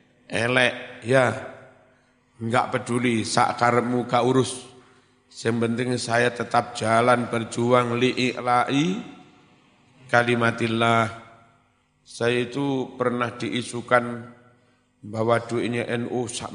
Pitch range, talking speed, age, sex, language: 115-130 Hz, 85 wpm, 50-69, male, Indonesian